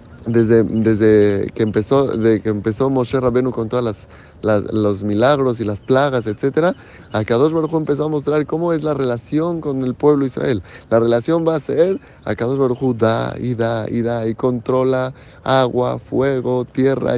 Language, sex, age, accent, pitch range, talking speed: Spanish, male, 20-39, Mexican, 110-155 Hz, 175 wpm